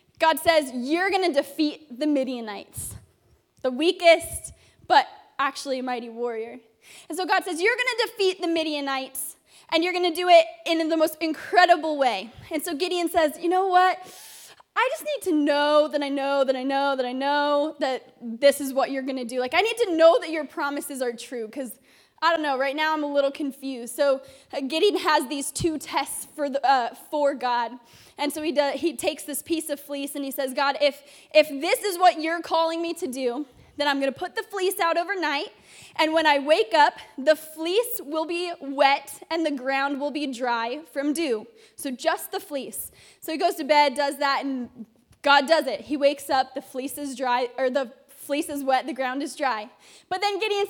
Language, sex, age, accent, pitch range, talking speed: English, female, 10-29, American, 275-335 Hz, 215 wpm